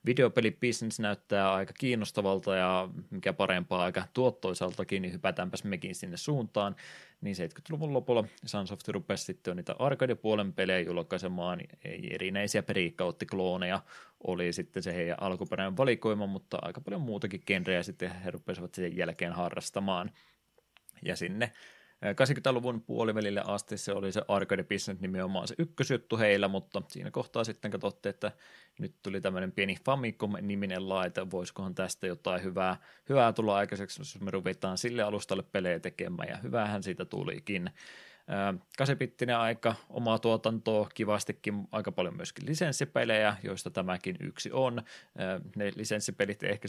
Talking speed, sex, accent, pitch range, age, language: 130 wpm, male, native, 95-115 Hz, 20-39, Finnish